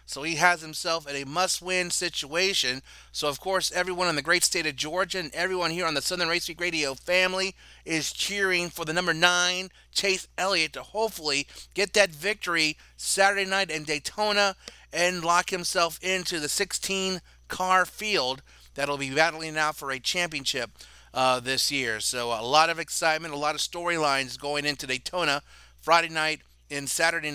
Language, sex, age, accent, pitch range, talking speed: English, male, 30-49, American, 165-230 Hz, 175 wpm